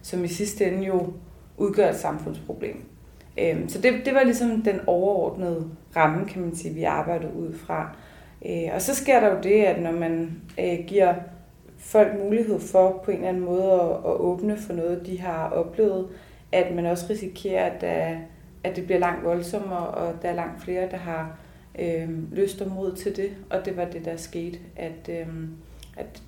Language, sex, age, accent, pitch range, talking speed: Danish, female, 30-49, native, 165-185 Hz, 175 wpm